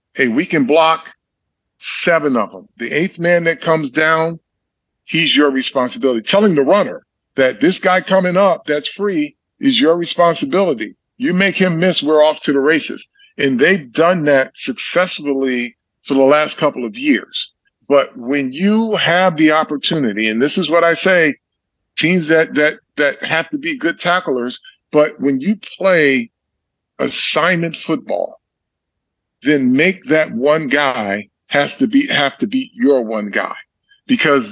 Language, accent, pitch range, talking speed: English, American, 140-200 Hz, 160 wpm